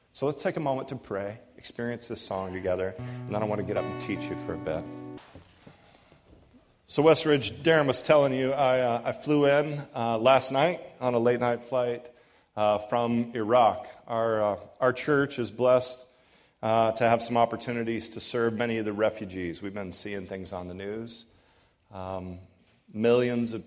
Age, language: 30-49, English